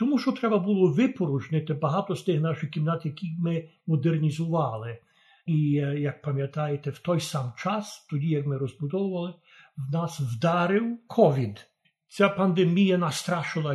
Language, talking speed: Ukrainian, 135 wpm